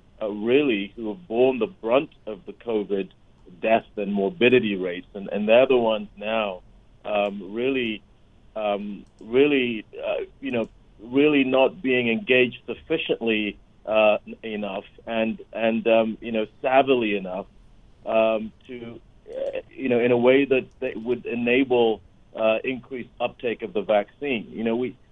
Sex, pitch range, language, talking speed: male, 105-125 Hz, English, 150 wpm